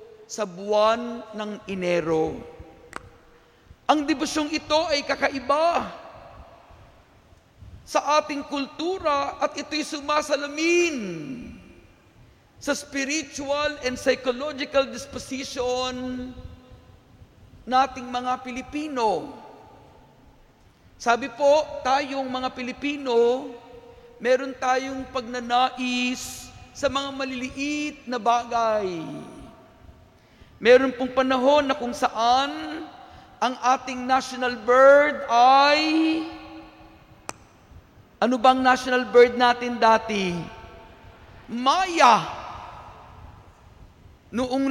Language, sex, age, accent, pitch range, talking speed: Filipino, male, 50-69, native, 245-285 Hz, 75 wpm